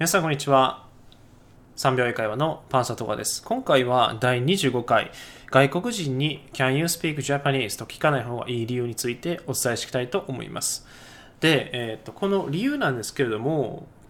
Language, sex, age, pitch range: Japanese, male, 20-39, 125-170 Hz